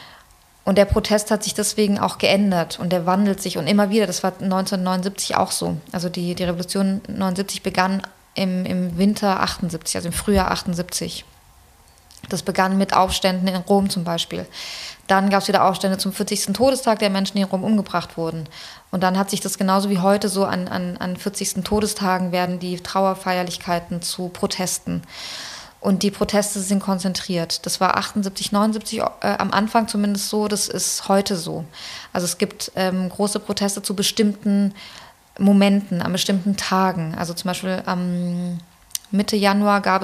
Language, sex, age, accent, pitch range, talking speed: German, female, 20-39, German, 180-200 Hz, 170 wpm